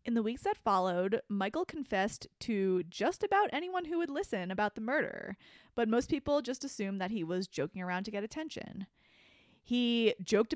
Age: 20-39